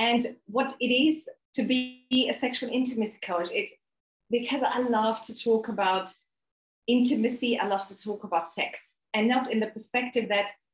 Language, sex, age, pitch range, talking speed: English, female, 30-49, 180-225 Hz, 170 wpm